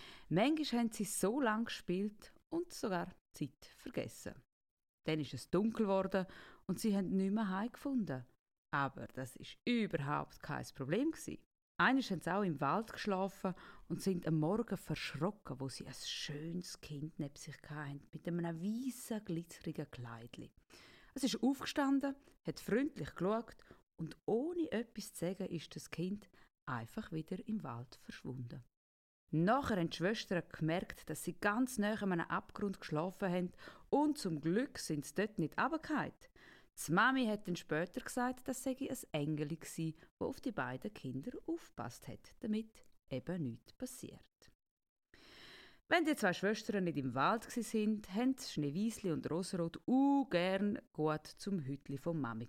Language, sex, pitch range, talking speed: German, female, 155-225 Hz, 150 wpm